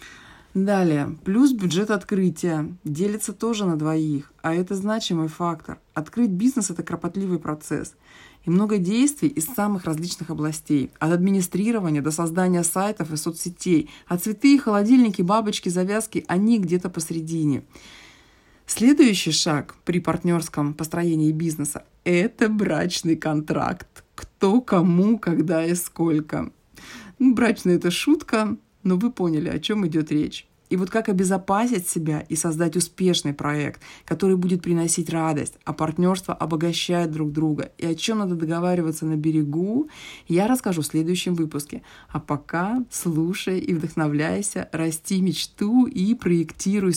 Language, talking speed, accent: Russian, 135 wpm, native